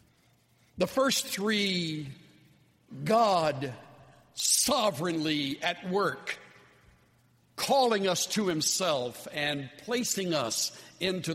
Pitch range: 125-185 Hz